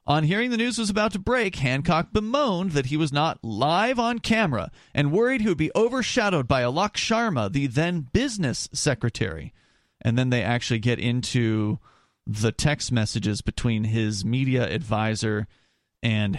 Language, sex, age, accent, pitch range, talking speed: English, male, 30-49, American, 120-170 Hz, 160 wpm